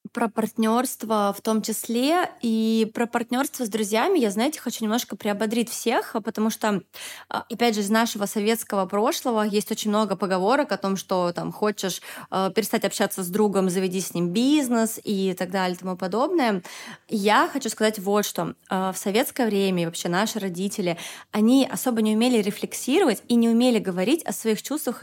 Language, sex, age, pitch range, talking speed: Russian, female, 20-39, 195-235 Hz, 170 wpm